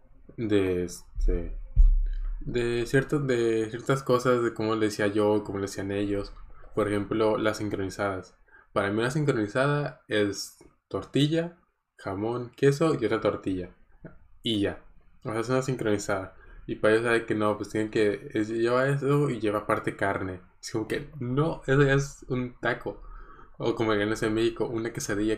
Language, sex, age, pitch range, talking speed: Spanish, male, 20-39, 100-120 Hz, 170 wpm